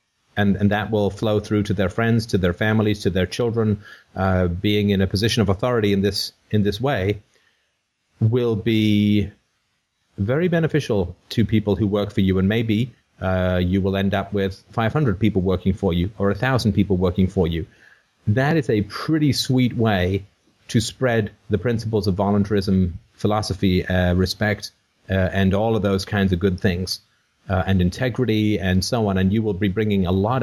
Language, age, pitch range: English, 30-49, 95-115 Hz